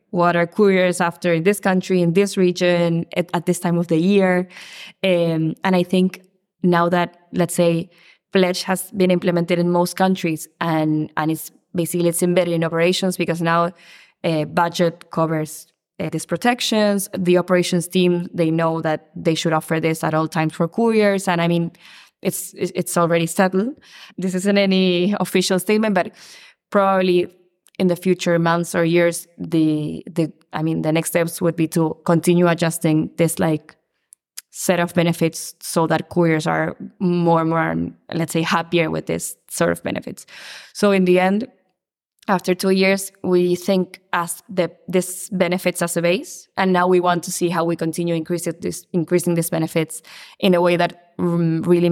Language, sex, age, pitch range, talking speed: English, female, 20-39, 165-185 Hz, 175 wpm